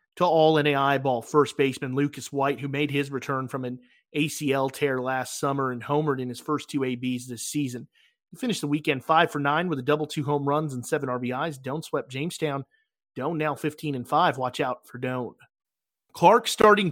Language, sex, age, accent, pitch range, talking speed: English, male, 30-49, American, 130-170 Hz, 190 wpm